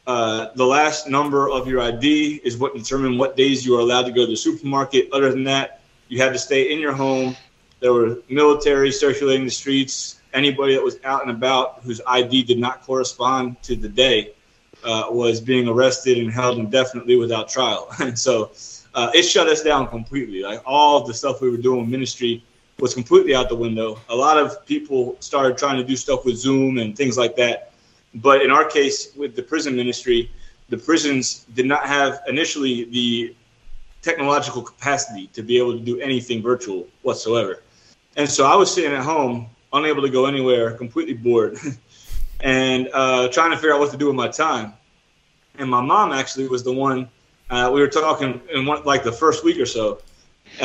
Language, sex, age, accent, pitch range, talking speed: English, male, 20-39, American, 125-145 Hz, 200 wpm